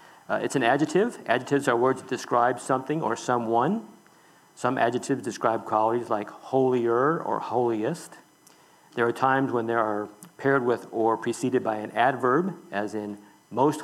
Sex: male